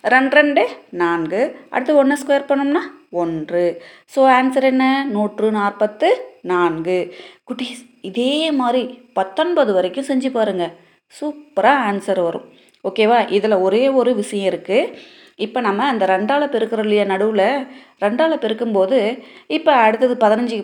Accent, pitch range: native, 205-280 Hz